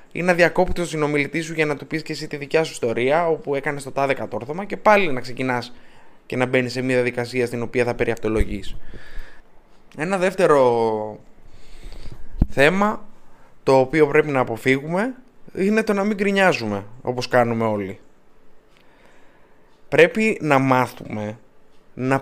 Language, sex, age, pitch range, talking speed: Greek, male, 20-39, 125-180 Hz, 150 wpm